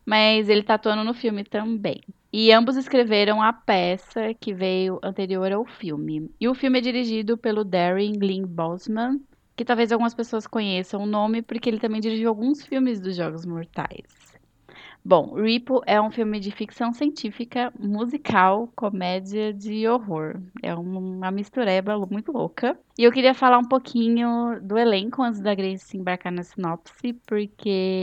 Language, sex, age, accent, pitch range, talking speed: Portuguese, female, 10-29, Brazilian, 195-240 Hz, 160 wpm